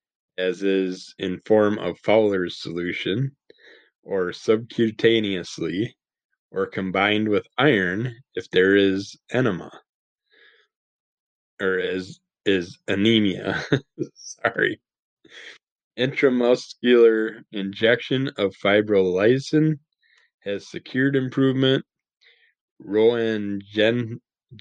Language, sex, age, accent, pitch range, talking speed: English, male, 20-39, American, 95-125 Hz, 75 wpm